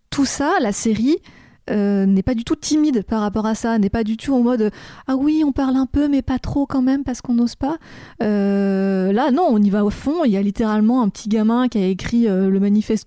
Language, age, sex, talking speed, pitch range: French, 20-39, female, 255 wpm, 195-235 Hz